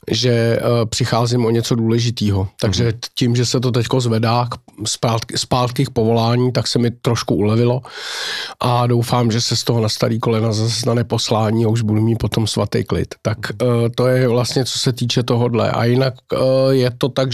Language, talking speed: Czech, 195 wpm